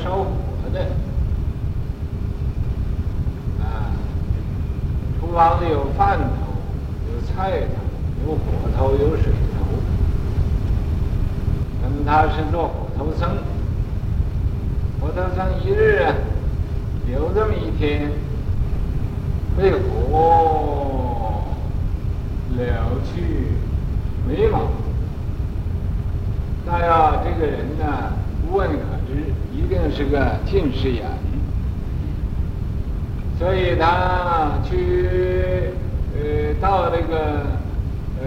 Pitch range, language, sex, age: 80-100 Hz, Chinese, male, 60-79